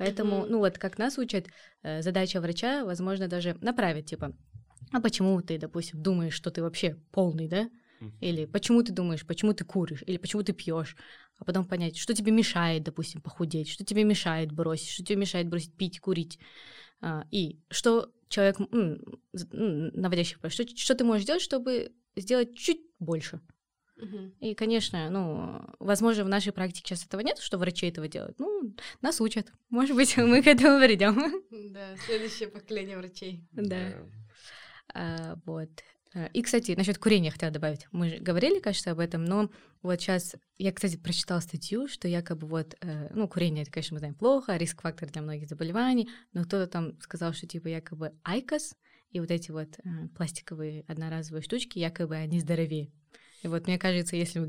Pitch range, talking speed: 165-210 Hz, 165 wpm